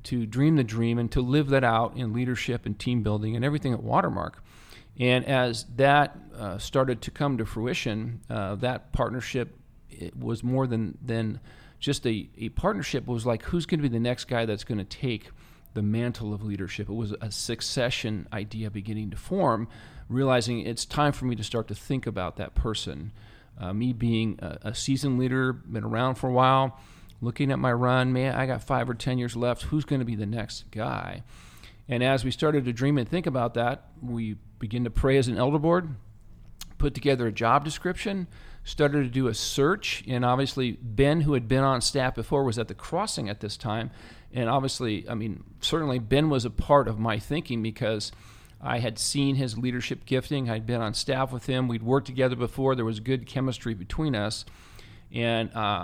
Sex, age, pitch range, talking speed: male, 40-59, 110-135 Hz, 200 wpm